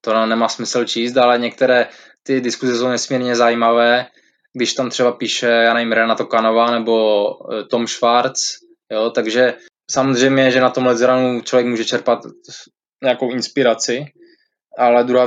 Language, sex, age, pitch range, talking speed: Czech, male, 20-39, 120-130 Hz, 140 wpm